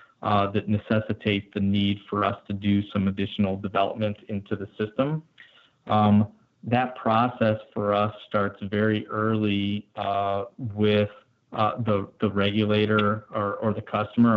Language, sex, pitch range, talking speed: English, male, 100-110 Hz, 140 wpm